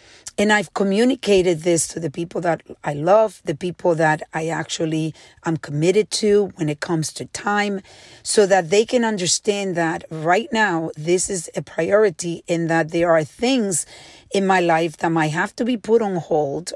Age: 40-59